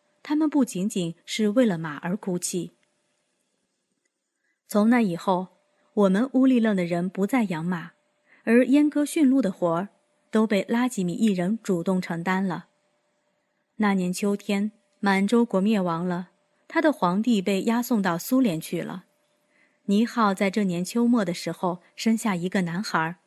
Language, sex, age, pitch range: Chinese, female, 20-39, 185-245 Hz